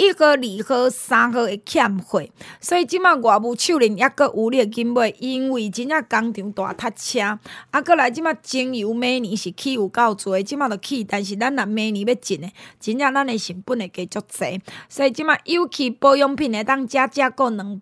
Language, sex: Chinese, female